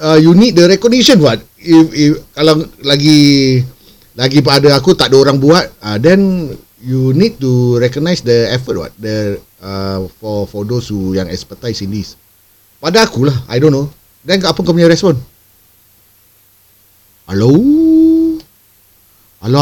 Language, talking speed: Malay, 145 wpm